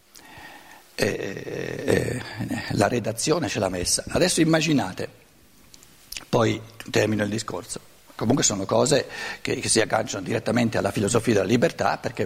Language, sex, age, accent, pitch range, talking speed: Italian, male, 50-69, native, 125-200 Hz, 125 wpm